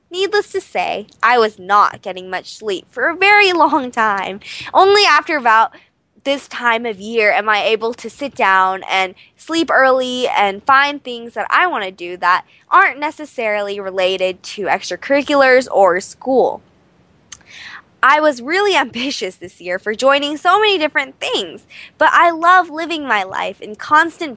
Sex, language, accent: female, English, American